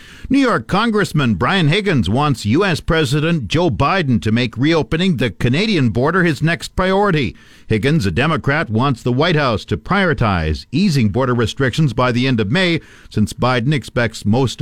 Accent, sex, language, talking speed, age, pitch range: American, male, English, 165 wpm, 50-69, 120-160 Hz